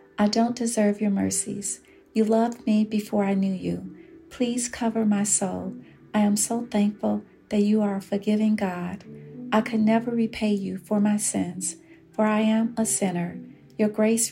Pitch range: 195-230 Hz